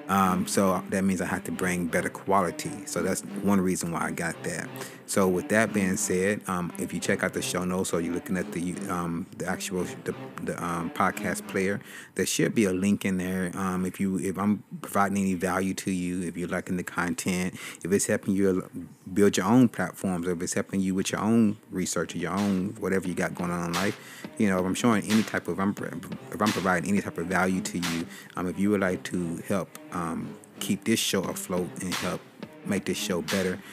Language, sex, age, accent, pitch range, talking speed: English, male, 30-49, American, 90-100 Hz, 230 wpm